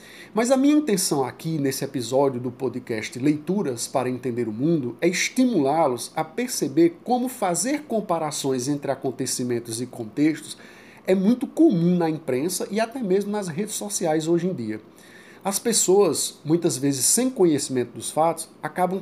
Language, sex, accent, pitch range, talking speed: Portuguese, male, Brazilian, 140-200 Hz, 150 wpm